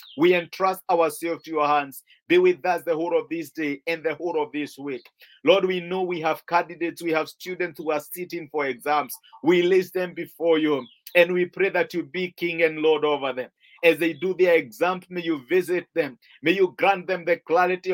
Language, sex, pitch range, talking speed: English, male, 155-195 Hz, 215 wpm